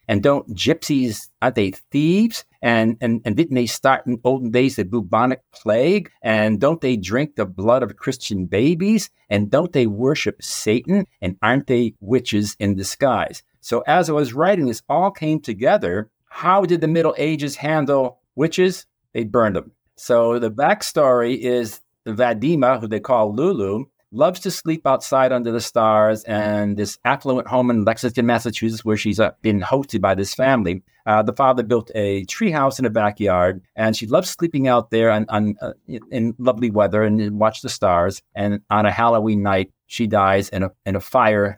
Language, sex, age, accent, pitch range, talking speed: English, male, 50-69, American, 105-135 Hz, 180 wpm